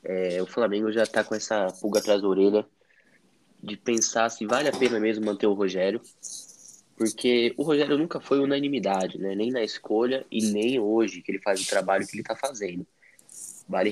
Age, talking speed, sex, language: 10-29, 185 wpm, male, Portuguese